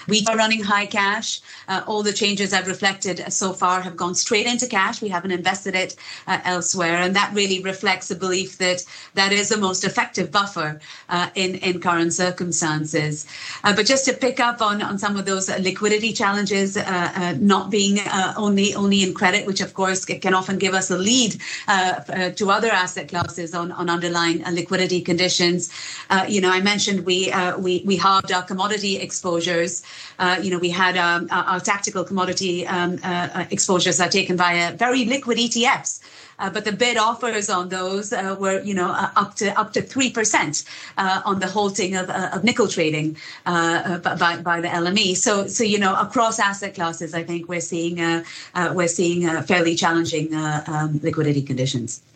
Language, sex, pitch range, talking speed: English, female, 175-200 Hz, 195 wpm